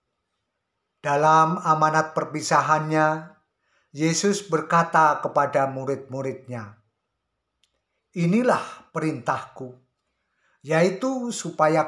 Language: Indonesian